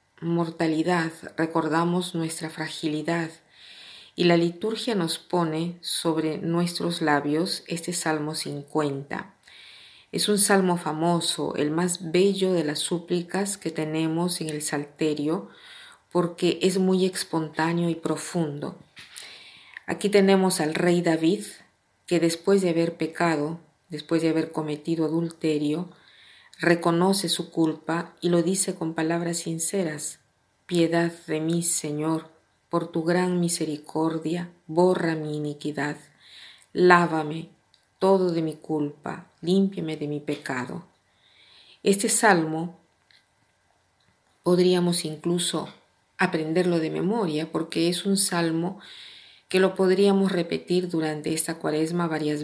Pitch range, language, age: 155-180 Hz, Spanish, 40-59